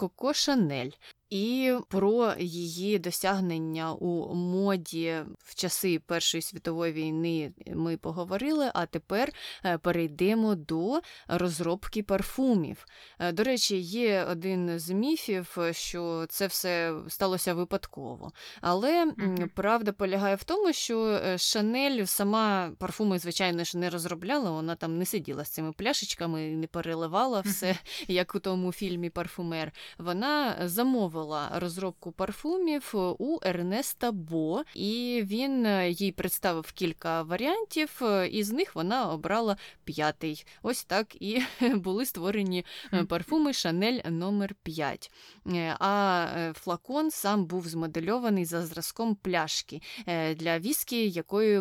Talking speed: 115 wpm